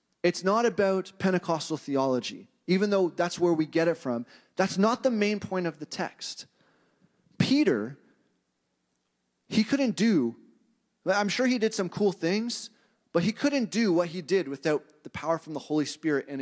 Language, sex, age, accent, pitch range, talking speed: English, male, 30-49, American, 135-210 Hz, 170 wpm